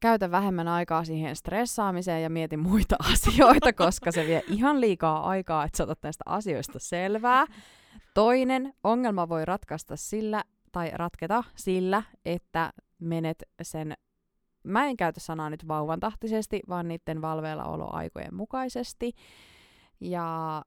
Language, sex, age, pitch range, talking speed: Finnish, female, 20-39, 160-210 Hz, 125 wpm